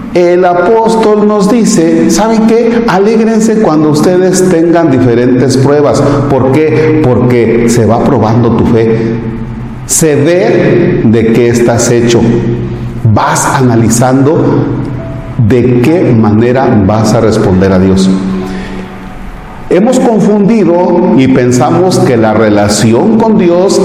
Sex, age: male, 40-59